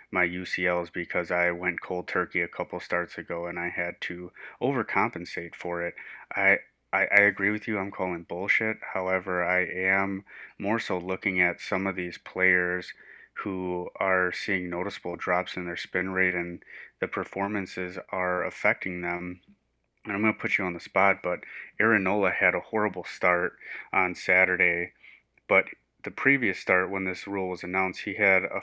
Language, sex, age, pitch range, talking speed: English, male, 30-49, 90-100 Hz, 170 wpm